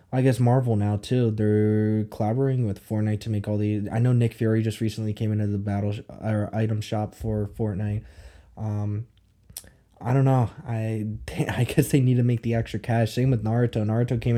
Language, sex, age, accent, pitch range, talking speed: English, male, 20-39, American, 105-120 Hz, 205 wpm